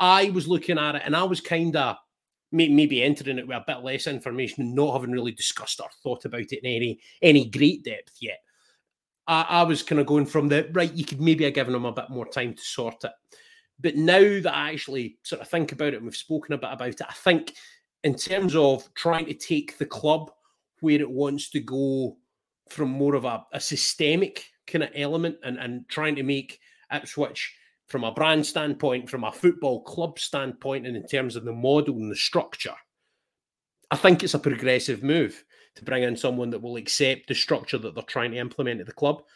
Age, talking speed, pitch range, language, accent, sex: 30-49, 220 wpm, 130-165 Hz, English, British, male